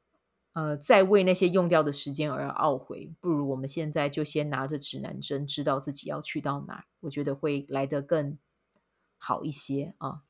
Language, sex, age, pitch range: Chinese, female, 20-39, 145-185 Hz